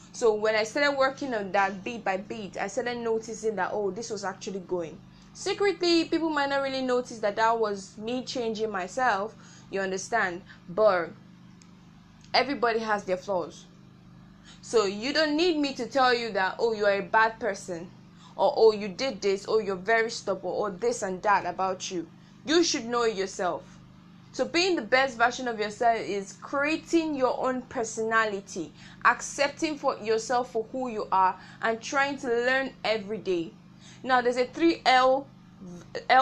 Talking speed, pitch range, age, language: 170 wpm, 190-250 Hz, 10-29, English